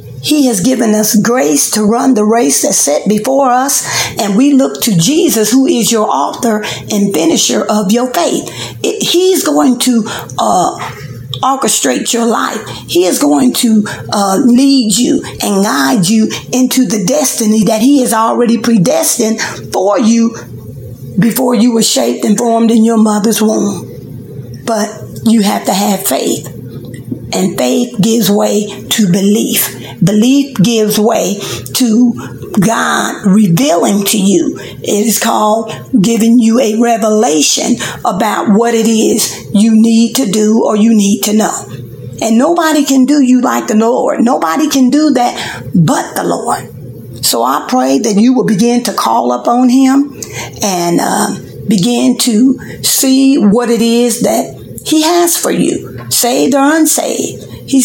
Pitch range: 215-255 Hz